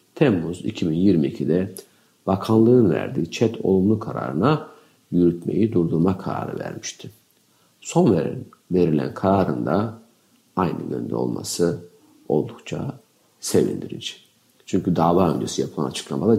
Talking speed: 95 wpm